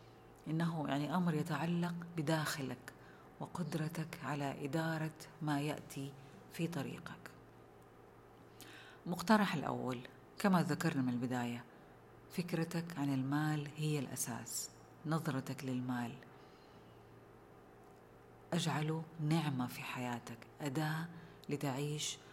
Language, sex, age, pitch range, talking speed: Arabic, female, 40-59, 130-160 Hz, 85 wpm